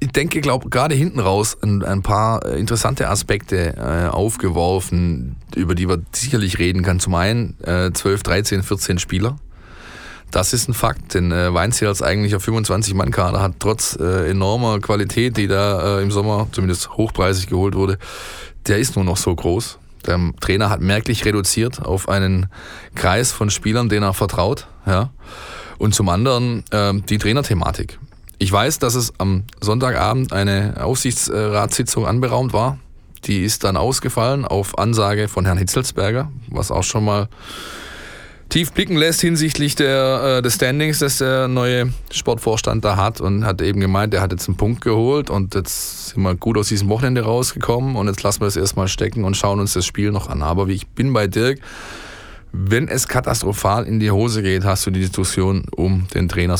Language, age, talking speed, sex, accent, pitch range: German, 20-39, 175 wpm, male, German, 95-120 Hz